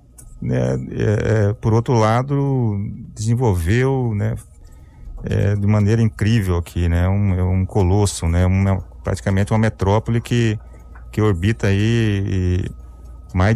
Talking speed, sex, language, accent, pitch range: 125 wpm, male, Portuguese, Brazilian, 90-110 Hz